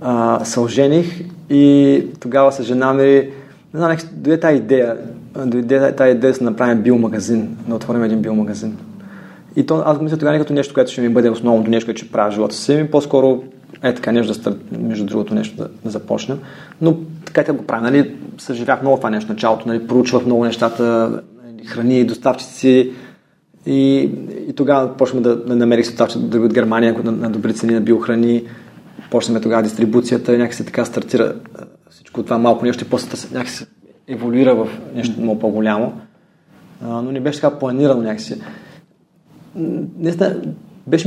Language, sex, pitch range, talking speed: Bulgarian, male, 115-145 Hz, 175 wpm